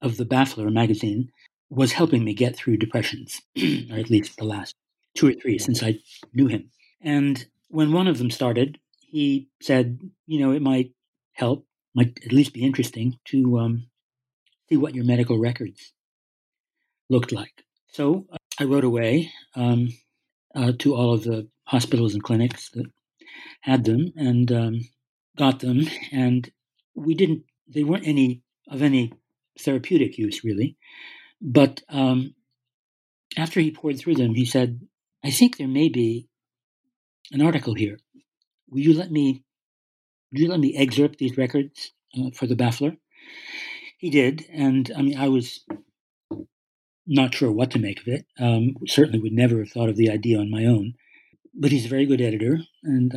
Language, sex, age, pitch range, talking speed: English, male, 60-79, 120-145 Hz, 165 wpm